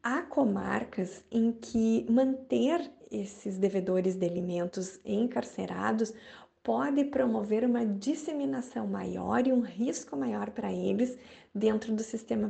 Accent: Brazilian